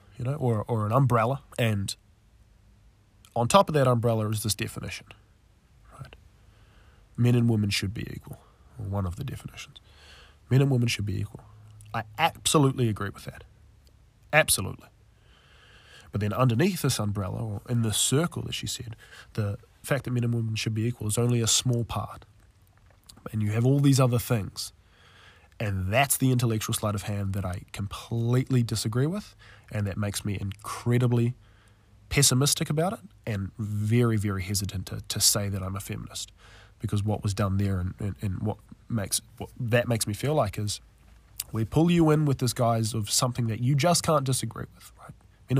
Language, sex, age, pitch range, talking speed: English, male, 20-39, 100-125 Hz, 180 wpm